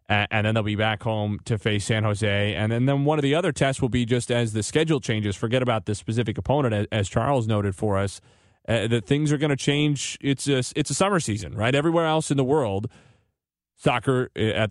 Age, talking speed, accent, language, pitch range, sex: 30-49, 225 wpm, American, English, 100-135 Hz, male